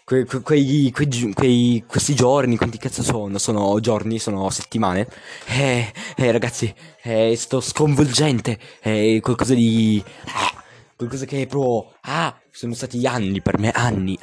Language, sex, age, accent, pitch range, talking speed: Italian, male, 20-39, native, 100-130 Hz, 160 wpm